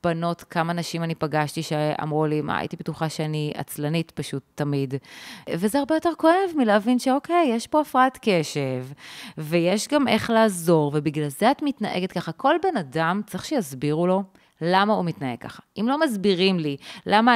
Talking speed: 165 wpm